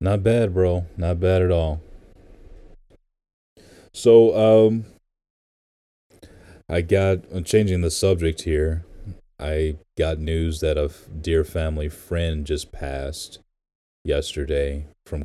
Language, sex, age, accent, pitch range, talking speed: English, male, 20-39, American, 70-90 Hz, 110 wpm